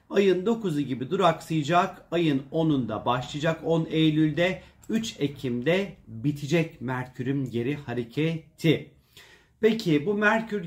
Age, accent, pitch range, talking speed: 40-59, native, 130-170 Hz, 100 wpm